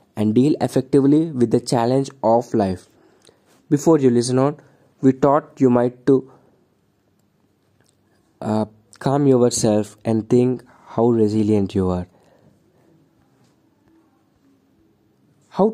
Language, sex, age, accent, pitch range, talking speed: English, male, 20-39, Indian, 115-135 Hz, 105 wpm